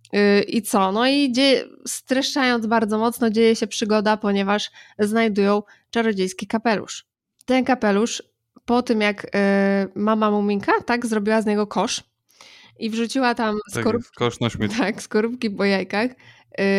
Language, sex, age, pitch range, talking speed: Polish, female, 20-39, 200-235 Hz, 120 wpm